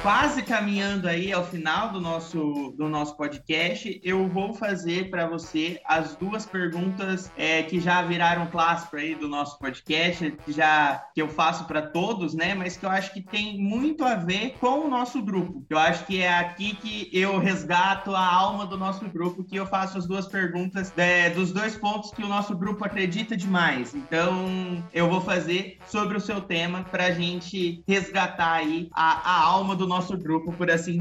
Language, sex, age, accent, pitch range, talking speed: Portuguese, male, 20-39, Brazilian, 175-220 Hz, 190 wpm